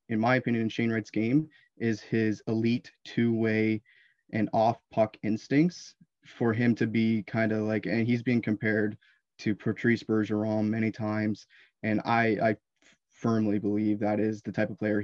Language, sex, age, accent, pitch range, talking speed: English, male, 20-39, American, 110-120 Hz, 170 wpm